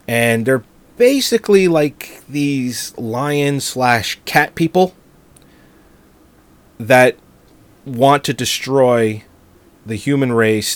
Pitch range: 100-130 Hz